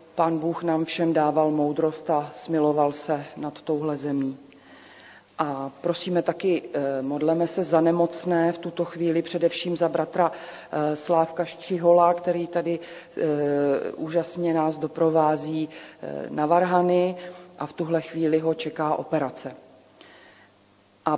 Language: Czech